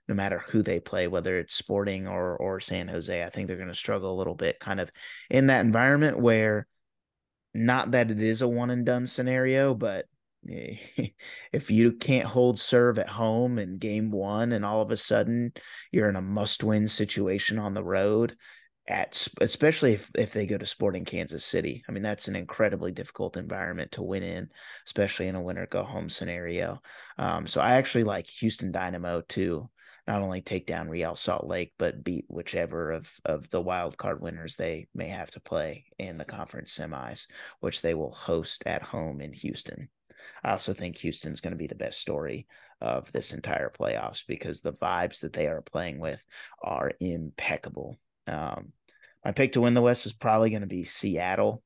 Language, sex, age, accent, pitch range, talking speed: English, male, 30-49, American, 90-120 Hz, 195 wpm